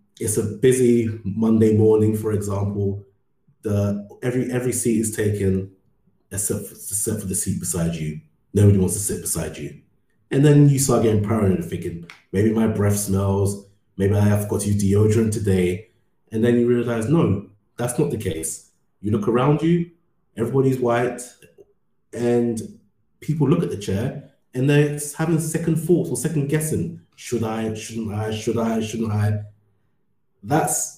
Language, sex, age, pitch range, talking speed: English, male, 30-49, 100-120 Hz, 165 wpm